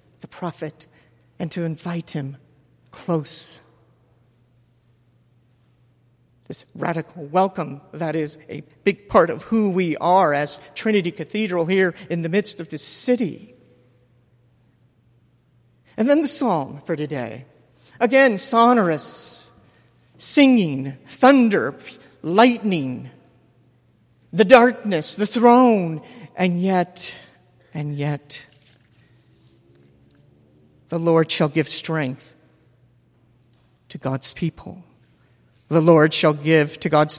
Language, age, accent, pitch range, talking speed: English, 50-69, American, 125-195 Hz, 100 wpm